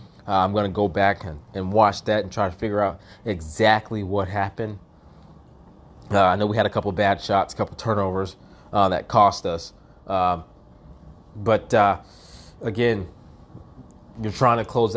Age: 20-39